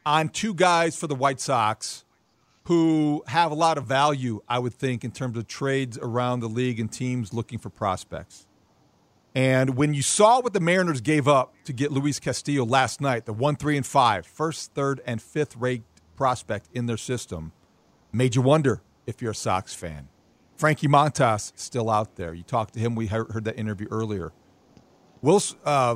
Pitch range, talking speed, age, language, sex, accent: 110-145 Hz, 185 wpm, 50-69, English, male, American